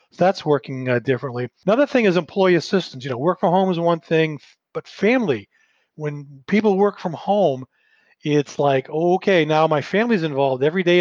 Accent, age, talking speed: American, 40-59, 175 wpm